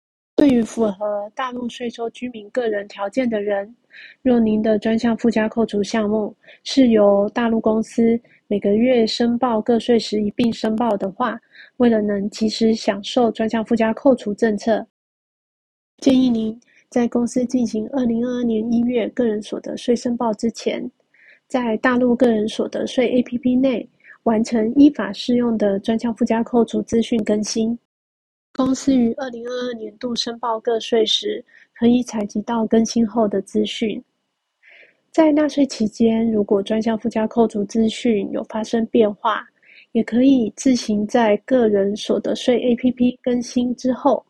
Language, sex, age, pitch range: Chinese, female, 20-39, 220-245 Hz